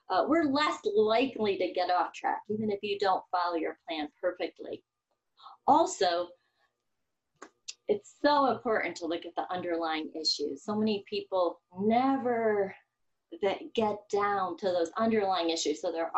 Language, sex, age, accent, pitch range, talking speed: English, female, 30-49, American, 165-220 Hz, 145 wpm